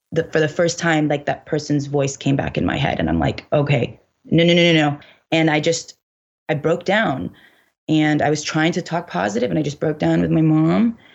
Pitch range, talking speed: 145-160 Hz, 235 wpm